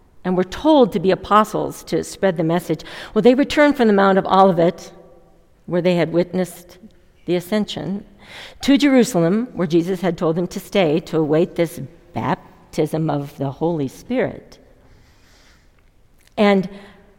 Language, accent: English, American